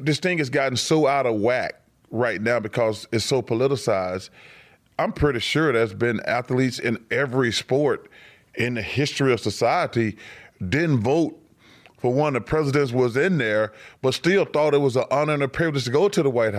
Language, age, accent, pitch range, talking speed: English, 30-49, American, 120-145 Hz, 190 wpm